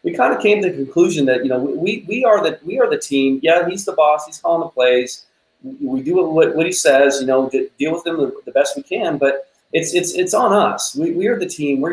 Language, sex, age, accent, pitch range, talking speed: English, male, 30-49, American, 110-160 Hz, 265 wpm